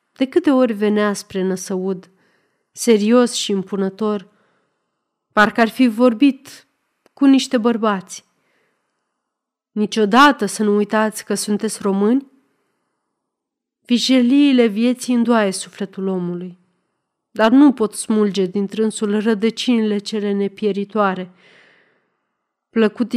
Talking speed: 100 wpm